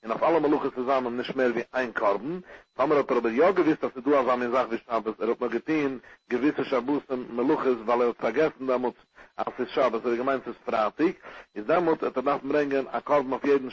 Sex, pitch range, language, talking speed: male, 125-155 Hz, English, 115 wpm